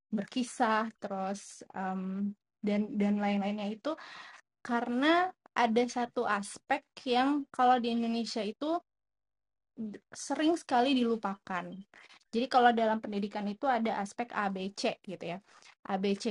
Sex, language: female, Indonesian